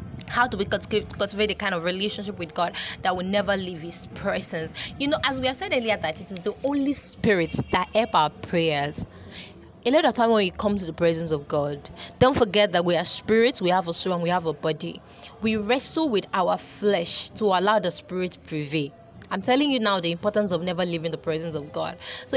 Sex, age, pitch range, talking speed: female, 20-39, 180-245 Hz, 230 wpm